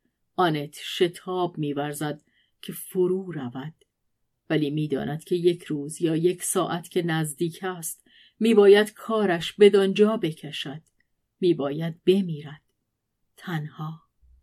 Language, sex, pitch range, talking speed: Persian, female, 155-195 Hz, 100 wpm